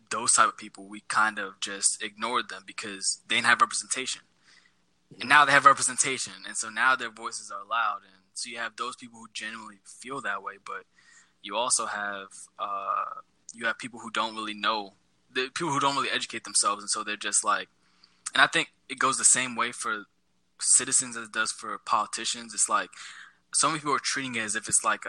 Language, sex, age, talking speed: English, male, 10-29, 215 wpm